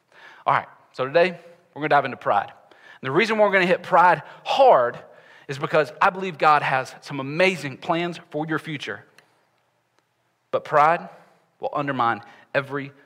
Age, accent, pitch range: 40-59, American, 145-195 Hz